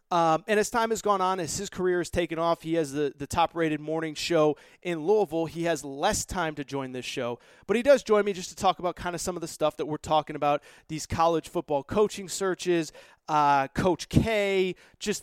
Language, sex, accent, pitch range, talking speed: English, male, American, 150-205 Hz, 235 wpm